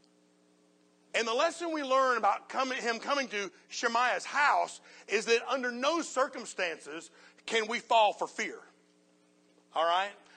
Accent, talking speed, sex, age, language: American, 140 wpm, male, 50-69, English